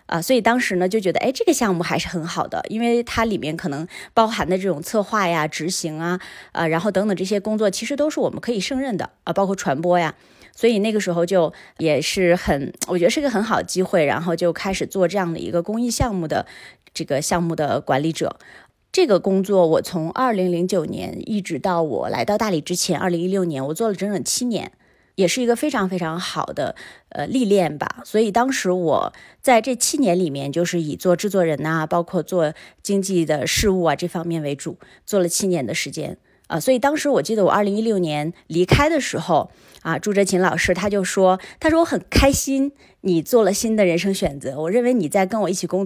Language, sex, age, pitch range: Chinese, female, 20-39, 170-210 Hz